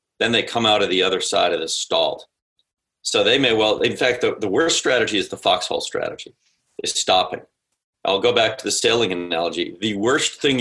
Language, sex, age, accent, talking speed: English, male, 40-59, American, 210 wpm